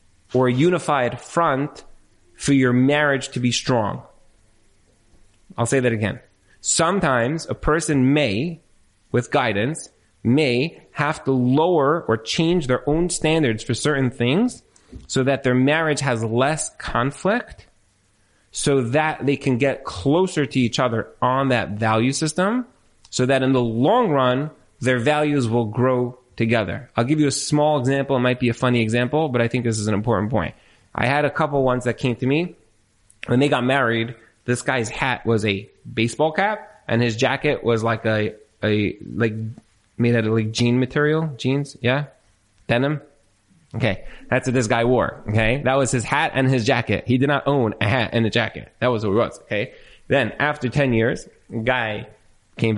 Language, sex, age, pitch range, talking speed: English, male, 30-49, 110-140 Hz, 175 wpm